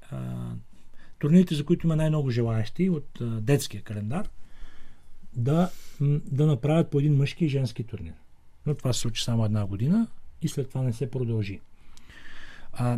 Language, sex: Bulgarian, male